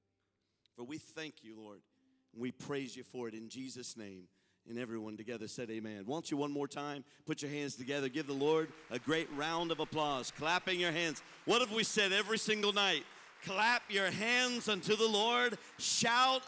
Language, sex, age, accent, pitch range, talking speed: English, male, 50-69, American, 125-200 Hz, 195 wpm